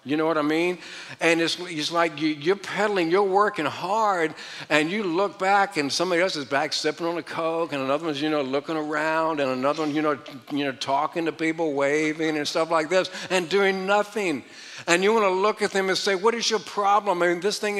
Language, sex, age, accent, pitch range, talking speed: English, male, 60-79, American, 145-195 Hz, 230 wpm